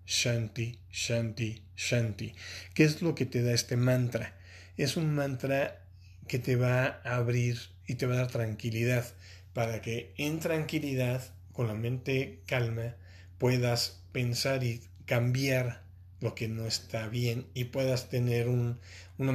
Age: 40-59